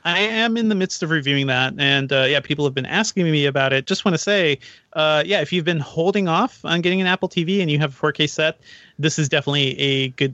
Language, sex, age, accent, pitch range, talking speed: English, male, 30-49, American, 135-165 Hz, 255 wpm